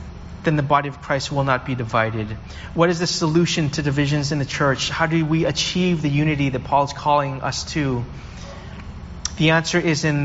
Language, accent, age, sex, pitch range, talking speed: English, American, 30-49, male, 135-165 Hz, 200 wpm